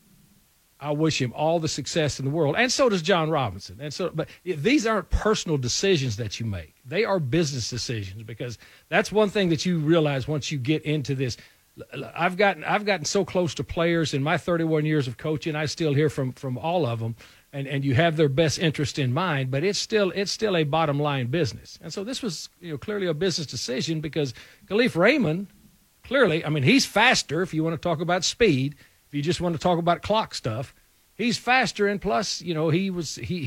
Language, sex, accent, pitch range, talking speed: English, male, American, 135-175 Hz, 220 wpm